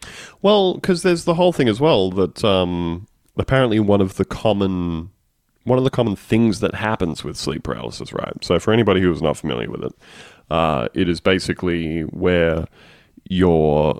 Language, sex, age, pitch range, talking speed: English, male, 30-49, 85-115 Hz, 175 wpm